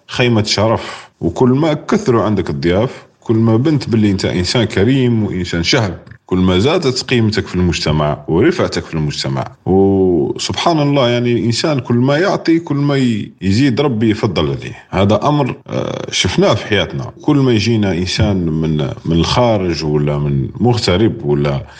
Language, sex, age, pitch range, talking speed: Arabic, male, 40-59, 85-125 Hz, 150 wpm